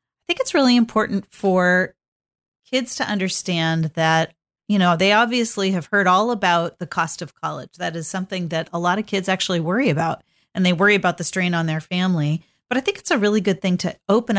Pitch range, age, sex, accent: 175-225 Hz, 40-59, female, American